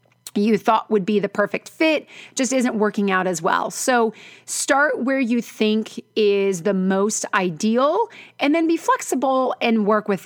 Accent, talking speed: American, 170 wpm